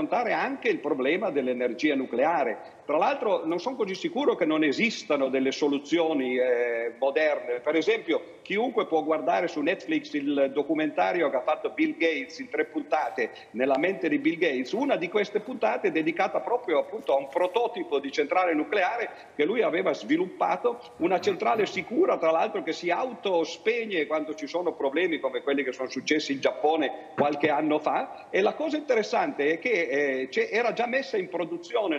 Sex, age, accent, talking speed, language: male, 50-69, native, 175 wpm, Italian